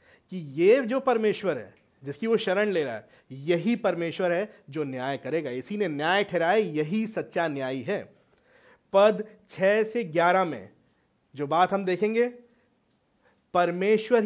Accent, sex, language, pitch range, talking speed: native, male, Hindi, 165-220 Hz, 145 wpm